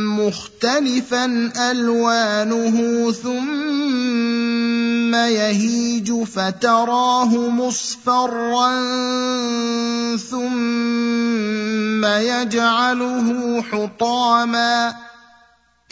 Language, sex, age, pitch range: Arabic, male, 30-49, 175-235 Hz